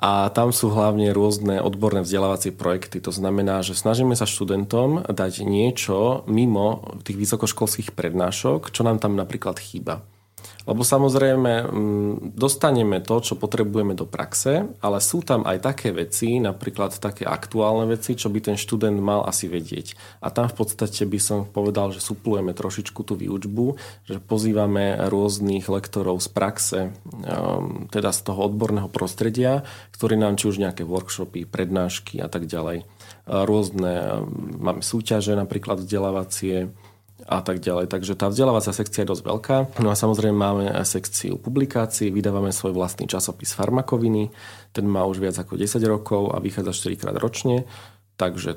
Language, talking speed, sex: Slovak, 150 wpm, male